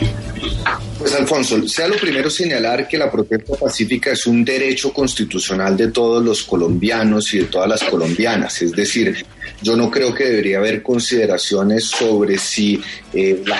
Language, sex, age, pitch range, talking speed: Spanish, male, 30-49, 110-135 Hz, 160 wpm